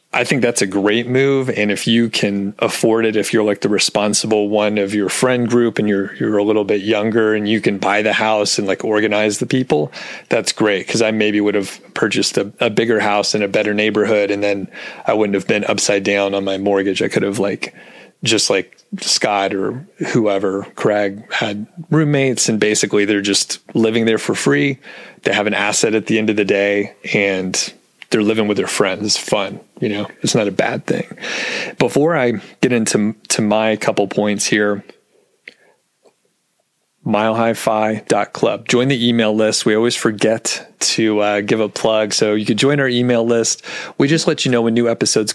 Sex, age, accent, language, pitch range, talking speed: male, 30-49, American, English, 105-115 Hz, 195 wpm